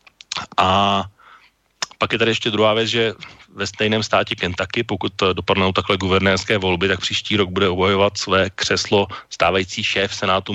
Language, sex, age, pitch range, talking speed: Slovak, male, 40-59, 90-105 Hz, 155 wpm